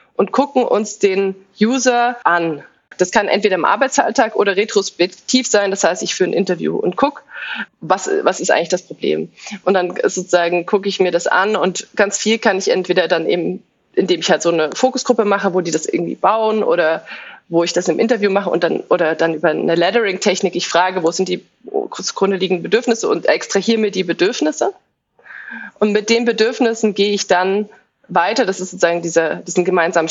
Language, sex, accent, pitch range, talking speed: German, female, German, 180-220 Hz, 190 wpm